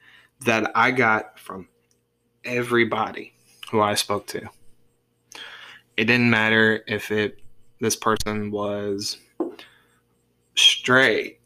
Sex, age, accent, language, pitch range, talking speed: male, 20-39, American, English, 100-115 Hz, 95 wpm